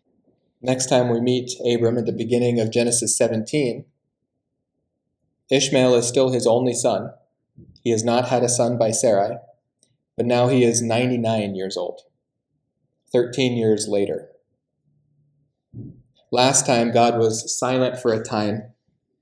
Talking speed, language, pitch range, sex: 135 wpm, English, 115-130 Hz, male